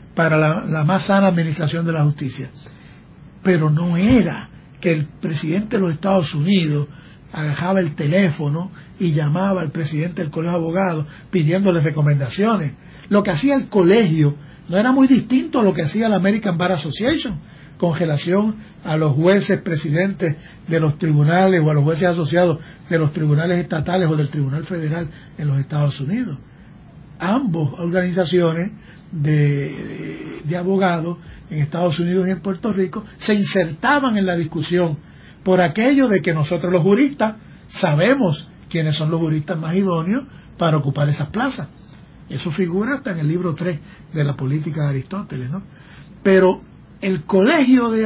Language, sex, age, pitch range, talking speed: Spanish, male, 60-79, 155-195 Hz, 155 wpm